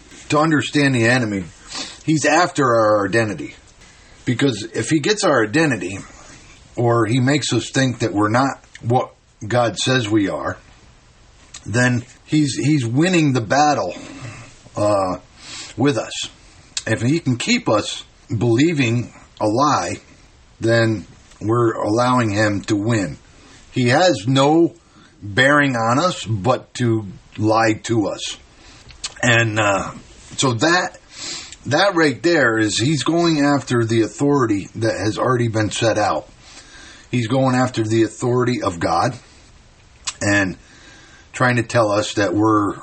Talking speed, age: 130 wpm, 50-69